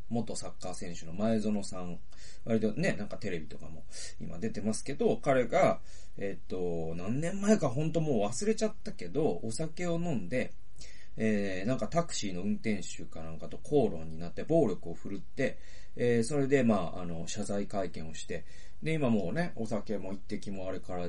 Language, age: Japanese, 40-59